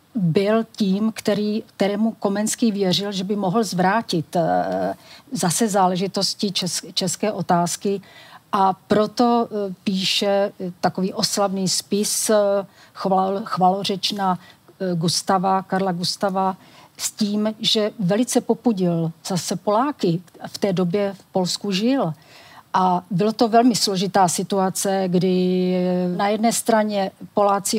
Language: Czech